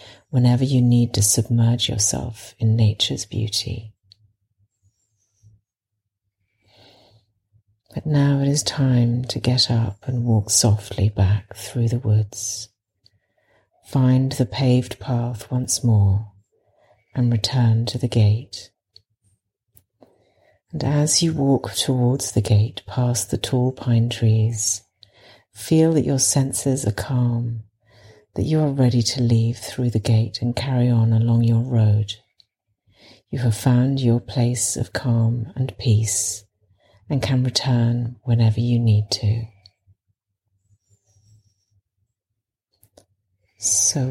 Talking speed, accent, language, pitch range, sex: 115 wpm, British, English, 105-125 Hz, female